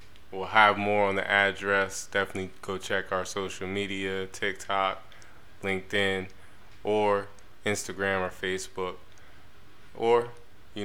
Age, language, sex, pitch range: 20-39, English, male, 95-105 Hz